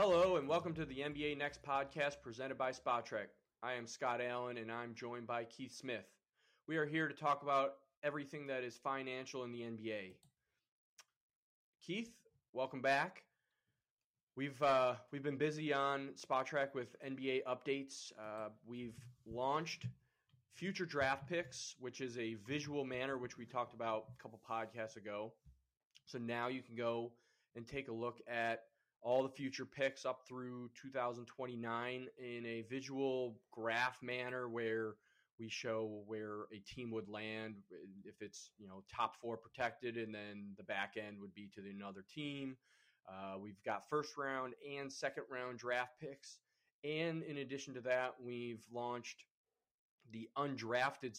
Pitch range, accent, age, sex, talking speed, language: 115-135 Hz, American, 20-39, male, 155 wpm, English